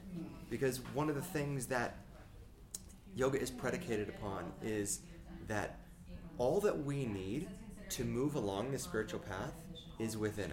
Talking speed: 135 wpm